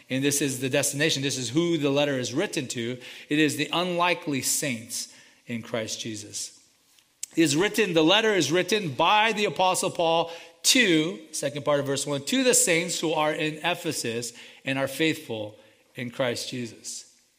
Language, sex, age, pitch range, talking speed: English, male, 40-59, 145-205 Hz, 175 wpm